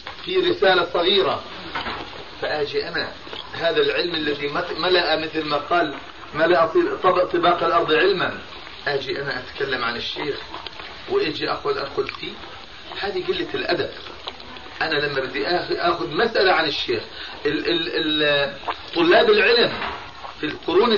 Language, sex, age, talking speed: Arabic, male, 40-59, 110 wpm